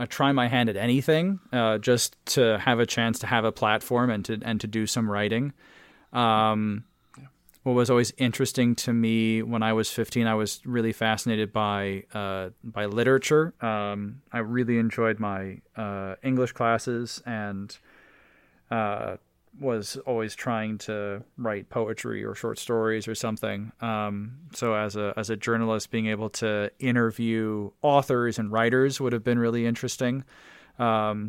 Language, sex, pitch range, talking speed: English, male, 110-125 Hz, 160 wpm